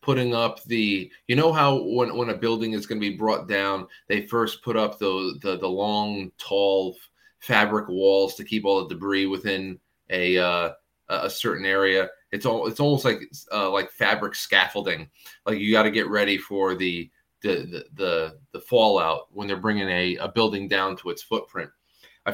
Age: 30-49